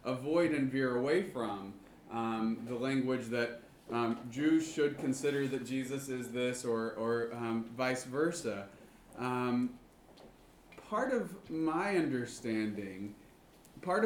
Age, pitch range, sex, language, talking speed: 30-49, 120-145 Hz, male, English, 120 wpm